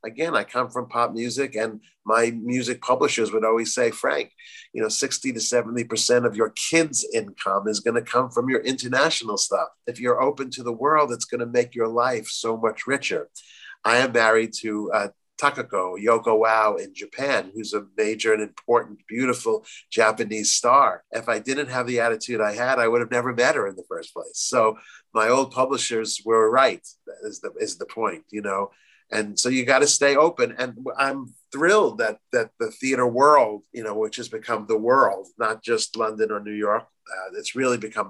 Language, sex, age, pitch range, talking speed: English, male, 50-69, 110-135 Hz, 200 wpm